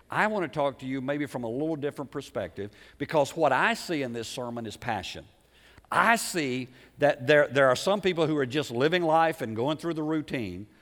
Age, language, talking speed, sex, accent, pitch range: 50-69, English, 215 wpm, male, American, 145-180 Hz